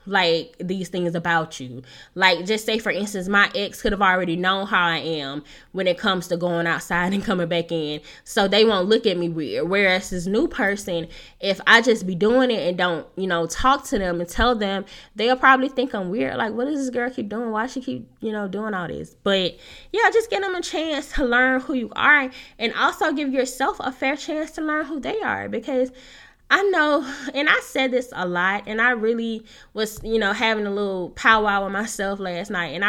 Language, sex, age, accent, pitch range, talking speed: English, female, 10-29, American, 185-245 Hz, 225 wpm